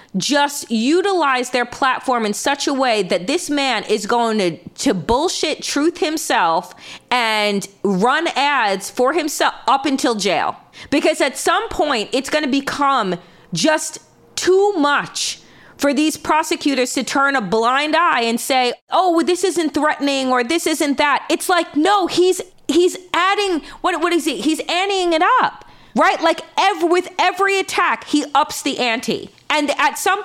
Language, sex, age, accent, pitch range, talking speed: English, female, 30-49, American, 255-345 Hz, 165 wpm